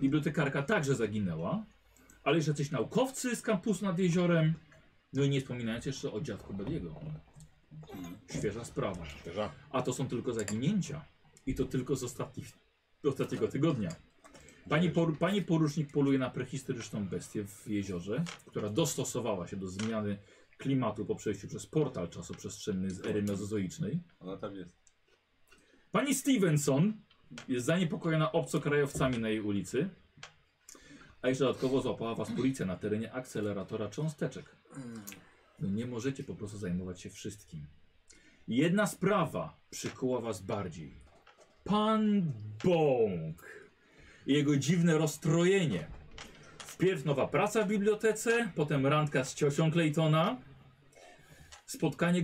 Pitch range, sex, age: 115-165 Hz, male, 30-49